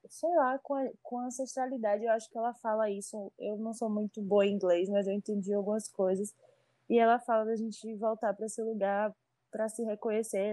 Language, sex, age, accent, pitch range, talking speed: Portuguese, female, 20-39, Brazilian, 200-225 Hz, 210 wpm